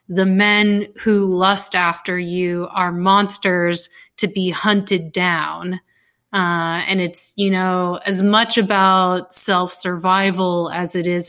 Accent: American